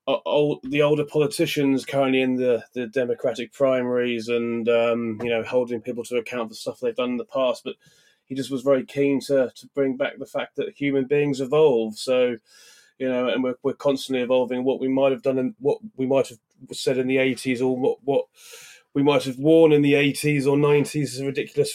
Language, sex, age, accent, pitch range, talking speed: English, male, 20-39, British, 125-145 Hz, 215 wpm